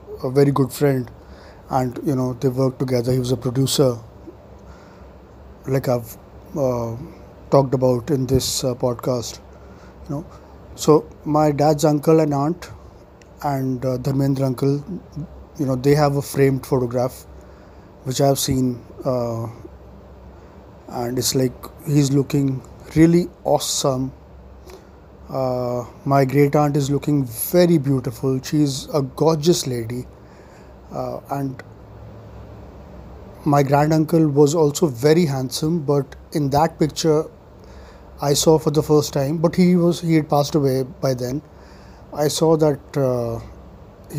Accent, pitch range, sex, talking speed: Indian, 125-150 Hz, male, 130 wpm